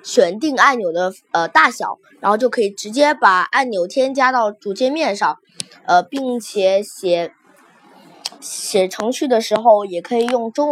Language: Chinese